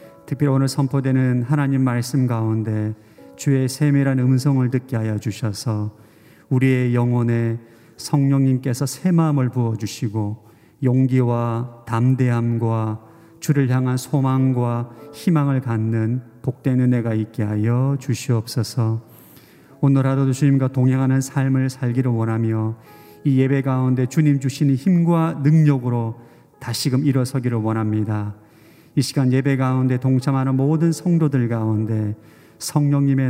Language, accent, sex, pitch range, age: Korean, native, male, 115-140 Hz, 40-59